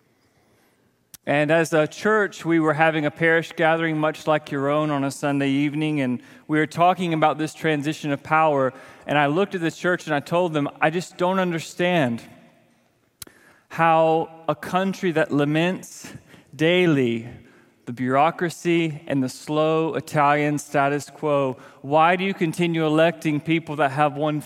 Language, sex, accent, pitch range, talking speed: English, male, American, 135-160 Hz, 155 wpm